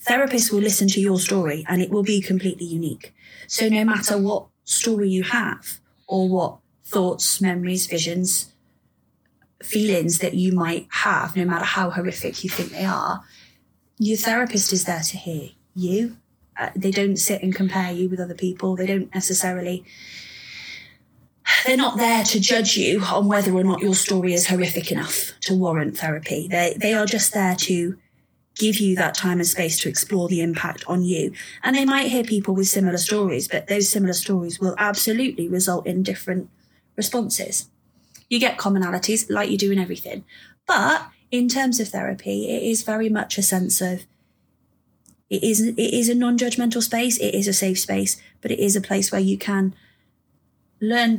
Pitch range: 180-215 Hz